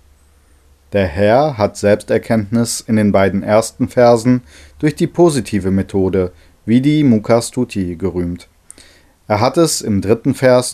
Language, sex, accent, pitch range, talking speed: German, male, German, 95-125 Hz, 125 wpm